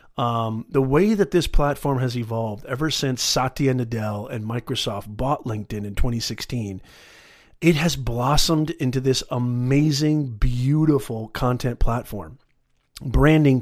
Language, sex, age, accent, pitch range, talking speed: English, male, 40-59, American, 130-165 Hz, 125 wpm